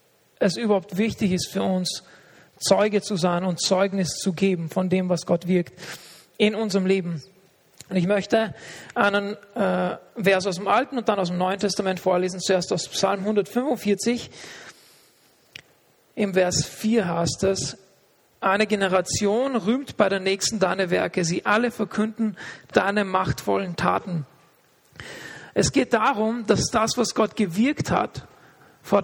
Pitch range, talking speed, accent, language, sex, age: 185-215 Hz, 145 wpm, German, German, male, 40-59